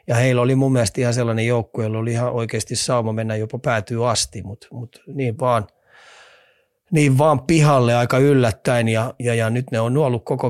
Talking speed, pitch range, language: 195 wpm, 110-130 Hz, Finnish